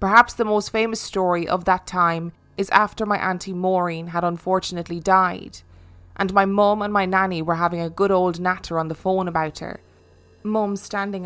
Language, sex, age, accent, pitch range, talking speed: English, female, 20-39, Irish, 165-195 Hz, 185 wpm